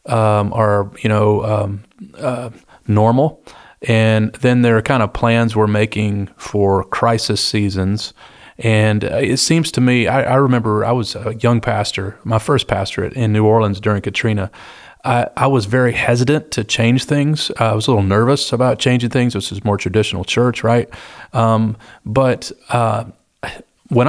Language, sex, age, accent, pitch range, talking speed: English, male, 30-49, American, 105-120 Hz, 160 wpm